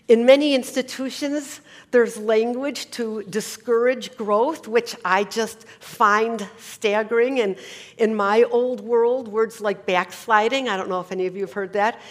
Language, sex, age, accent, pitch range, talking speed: English, female, 50-69, American, 185-235 Hz, 155 wpm